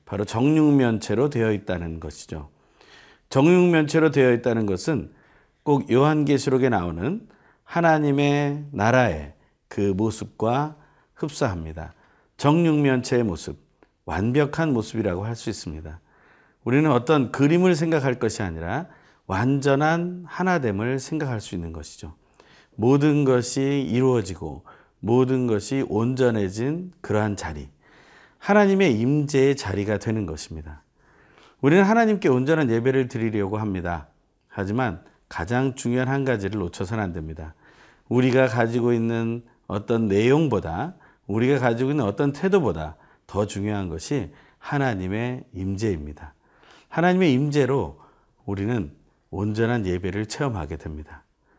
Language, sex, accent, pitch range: Korean, male, native, 100-140 Hz